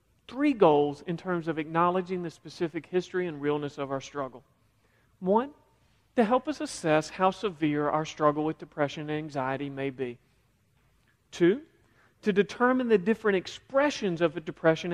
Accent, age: American, 40-59